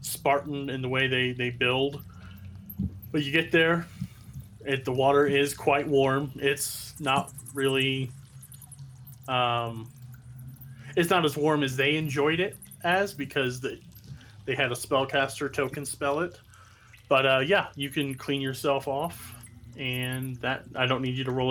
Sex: male